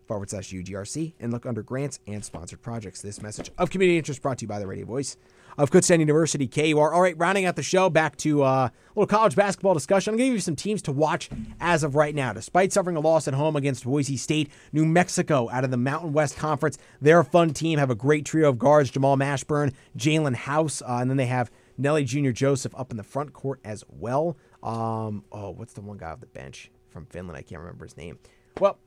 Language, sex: English, male